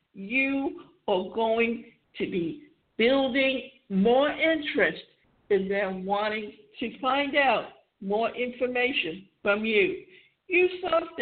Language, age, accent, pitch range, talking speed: English, 60-79, American, 210-275 Hz, 105 wpm